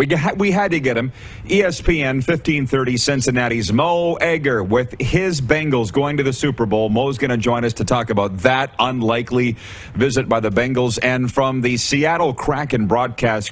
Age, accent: 40-59, American